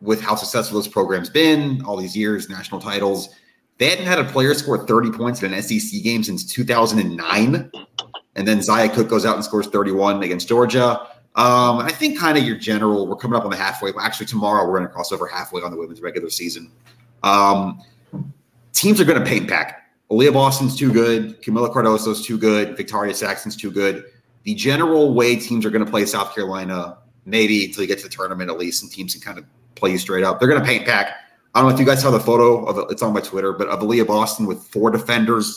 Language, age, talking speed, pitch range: English, 30-49, 230 wpm, 100-120 Hz